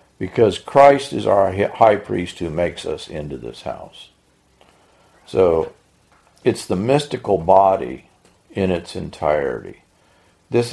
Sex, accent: male, American